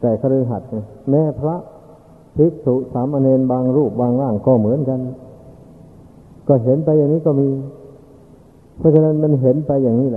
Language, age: Thai, 60-79